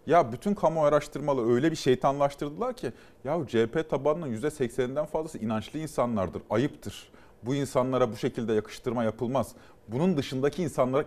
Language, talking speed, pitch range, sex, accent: Turkish, 135 wpm, 130-195 Hz, male, native